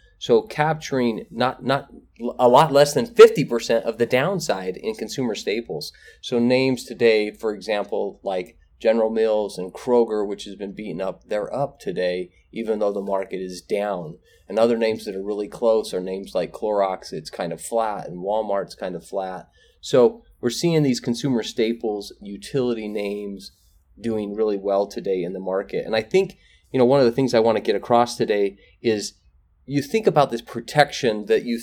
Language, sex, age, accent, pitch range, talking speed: English, male, 30-49, American, 100-125 Hz, 185 wpm